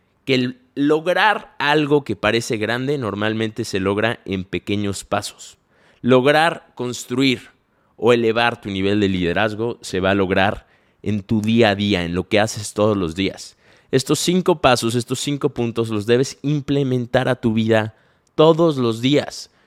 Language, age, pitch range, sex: Spanish, 20-39, 105-135 Hz, male